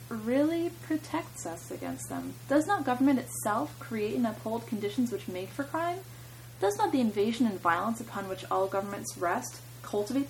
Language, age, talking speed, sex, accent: English, 20-39, 170 wpm, female, American